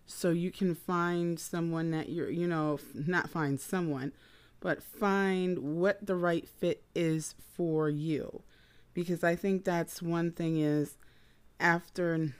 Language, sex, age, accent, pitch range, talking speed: English, female, 30-49, American, 165-230 Hz, 140 wpm